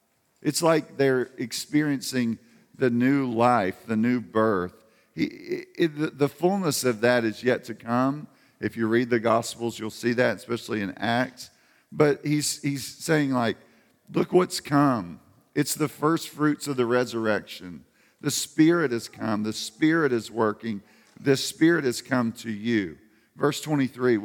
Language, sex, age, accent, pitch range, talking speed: English, male, 50-69, American, 115-140 Hz, 150 wpm